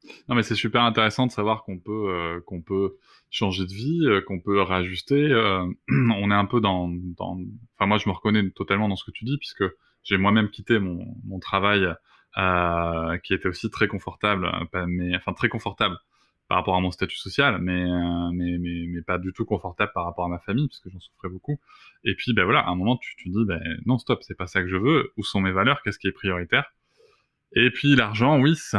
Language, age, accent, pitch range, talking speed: French, 20-39, French, 95-115 Hz, 235 wpm